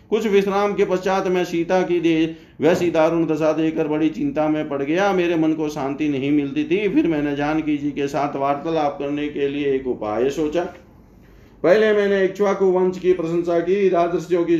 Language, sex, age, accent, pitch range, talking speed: Hindi, male, 50-69, native, 150-180 Hz, 95 wpm